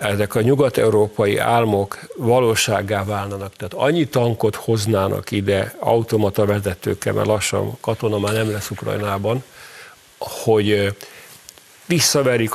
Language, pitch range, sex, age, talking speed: Hungarian, 100-115 Hz, male, 50-69, 105 wpm